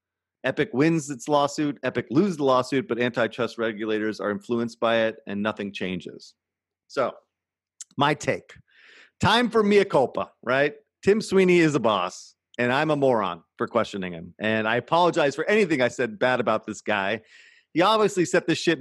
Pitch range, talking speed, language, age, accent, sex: 115-165 Hz, 170 wpm, English, 40-59, American, male